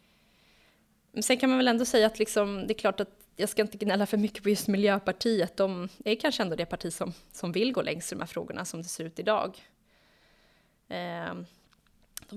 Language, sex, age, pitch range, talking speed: Swedish, female, 20-39, 180-215 Hz, 200 wpm